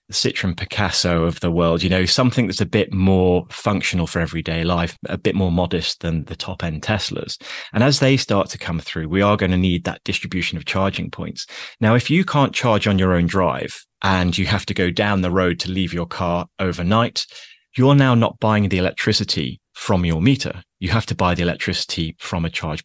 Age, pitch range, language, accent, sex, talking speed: 30-49, 90-110 Hz, English, British, male, 215 wpm